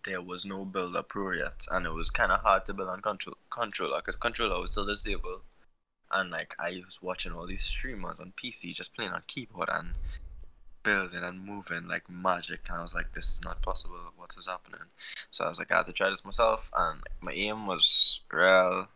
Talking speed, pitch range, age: 220 wpm, 90-110 Hz, 10-29